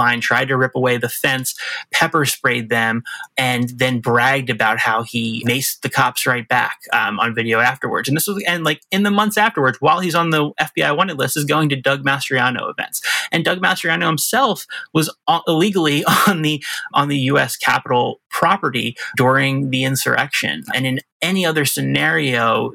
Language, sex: English, male